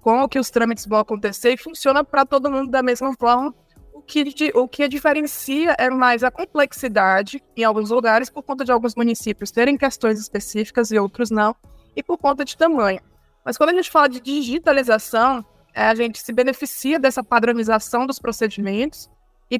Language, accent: Portuguese, Brazilian